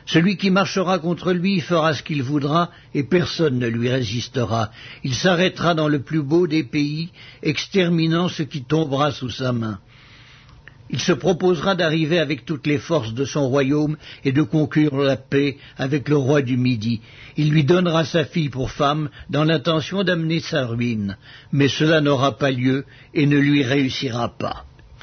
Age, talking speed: 60-79, 175 wpm